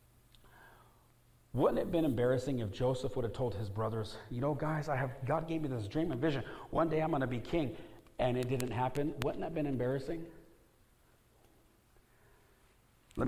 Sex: male